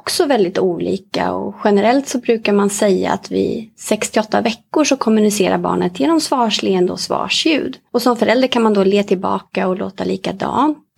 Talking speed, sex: 175 wpm, female